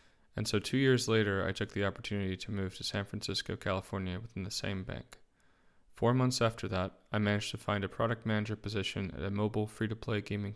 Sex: male